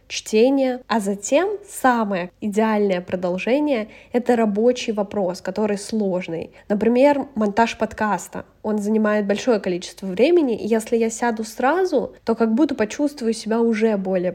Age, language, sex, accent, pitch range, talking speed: 10-29, Russian, female, native, 210-250 Hz, 135 wpm